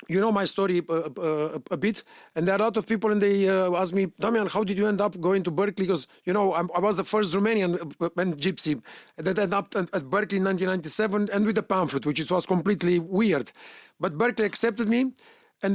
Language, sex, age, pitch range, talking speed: Romanian, male, 30-49, 190-230 Hz, 245 wpm